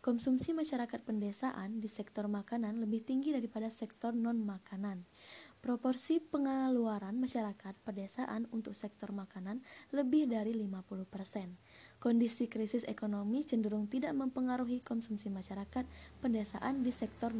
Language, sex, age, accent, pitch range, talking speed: Indonesian, female, 20-39, native, 205-255 Hz, 110 wpm